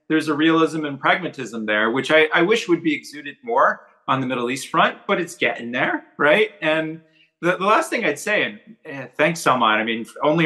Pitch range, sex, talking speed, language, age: 120-155 Hz, male, 210 wpm, English, 30-49